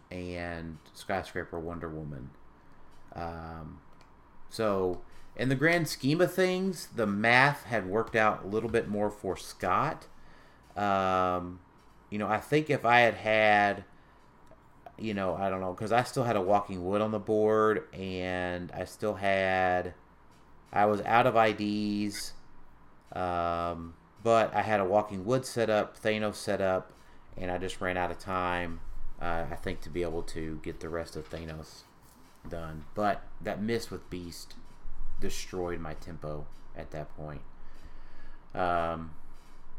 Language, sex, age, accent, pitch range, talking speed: English, male, 30-49, American, 85-110 Hz, 150 wpm